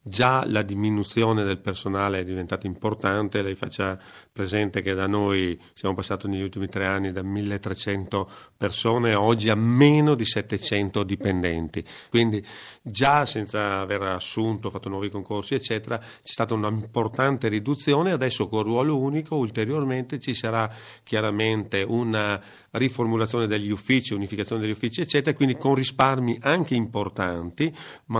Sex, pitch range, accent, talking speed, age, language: male, 100-120 Hz, native, 135 wpm, 40-59, Italian